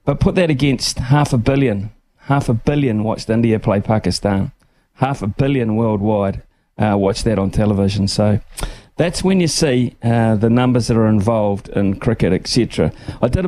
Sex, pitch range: male, 105-130 Hz